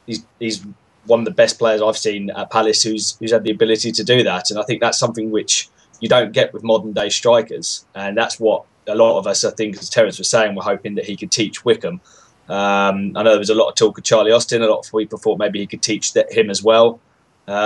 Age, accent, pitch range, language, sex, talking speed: 10-29, British, 105-115 Hz, English, male, 265 wpm